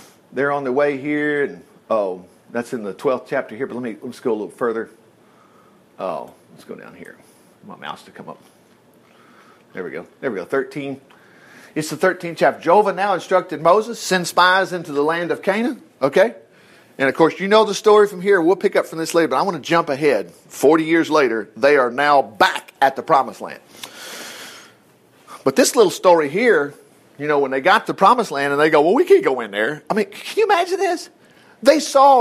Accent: American